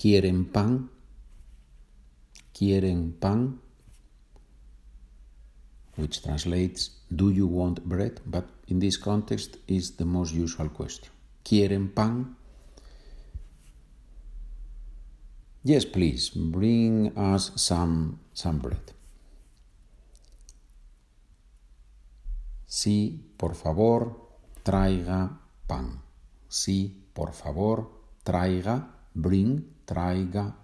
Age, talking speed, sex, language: 50-69, 75 wpm, male, Spanish